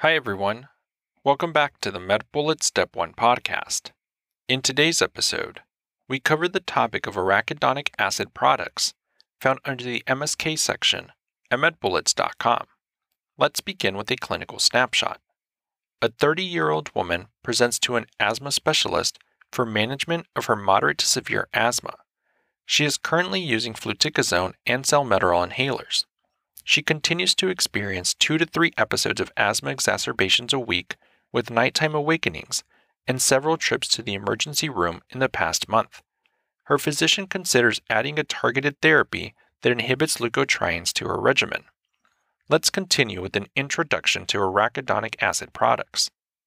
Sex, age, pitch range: male, 40-59, 110-155 Hz